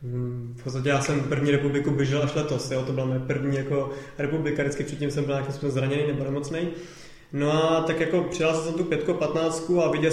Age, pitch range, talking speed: 20-39, 150-165 Hz, 220 wpm